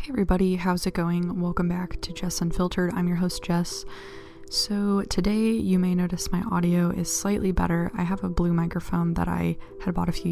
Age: 20-39